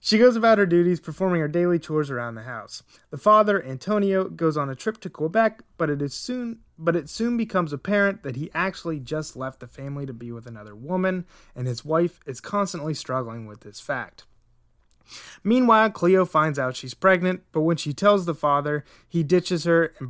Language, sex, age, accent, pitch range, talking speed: English, male, 20-39, American, 130-185 Hz, 190 wpm